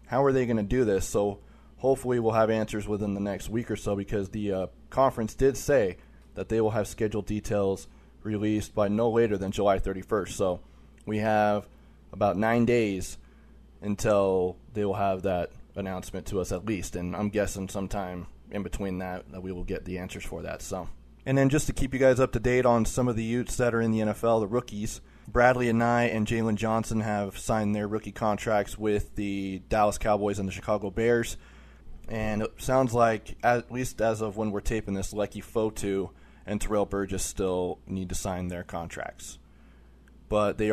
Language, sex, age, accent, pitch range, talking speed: English, male, 20-39, American, 95-110 Hz, 200 wpm